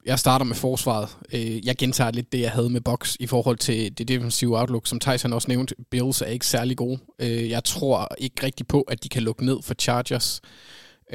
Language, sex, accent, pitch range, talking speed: Danish, male, native, 115-130 Hz, 210 wpm